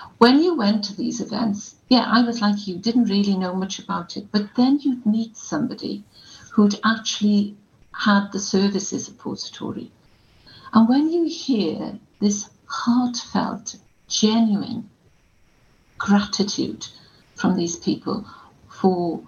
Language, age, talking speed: English, 50-69, 125 wpm